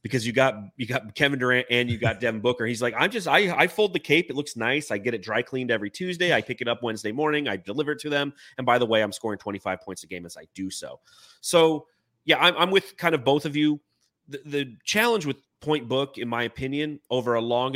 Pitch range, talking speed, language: 110-140 Hz, 265 wpm, English